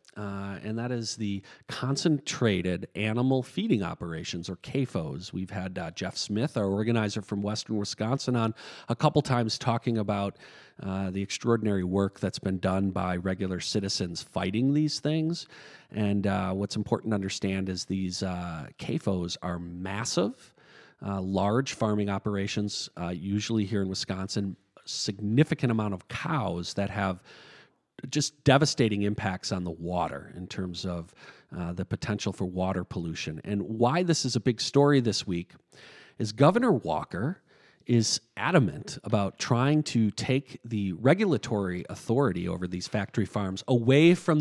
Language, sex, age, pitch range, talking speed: English, male, 40-59, 95-125 Hz, 150 wpm